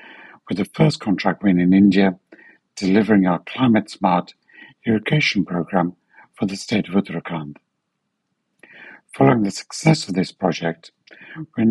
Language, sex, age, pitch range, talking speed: English, male, 60-79, 90-110 Hz, 125 wpm